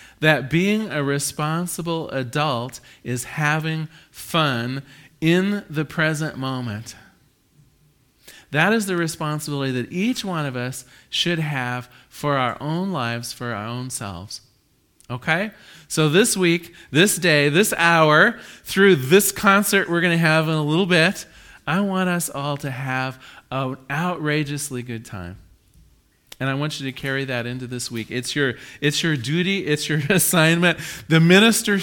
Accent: American